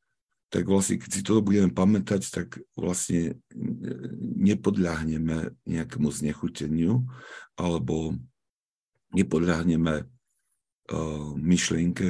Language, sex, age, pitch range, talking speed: Slovak, male, 50-69, 80-100 Hz, 80 wpm